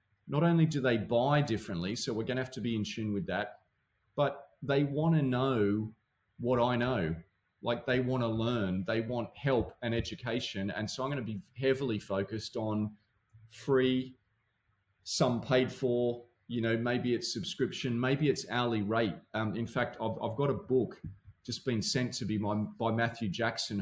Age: 30-49